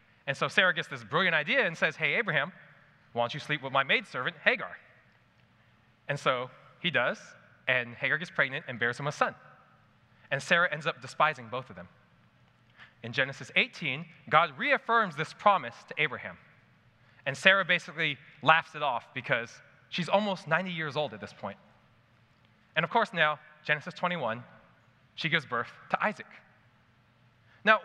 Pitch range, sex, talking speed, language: 120-170 Hz, male, 165 wpm, English